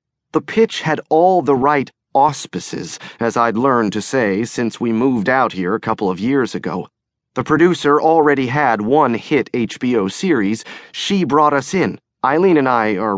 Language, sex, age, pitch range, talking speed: English, male, 40-59, 130-185 Hz, 175 wpm